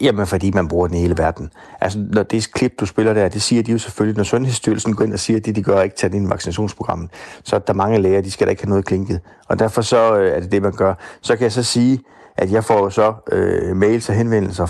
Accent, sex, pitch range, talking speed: native, male, 95-125 Hz, 295 wpm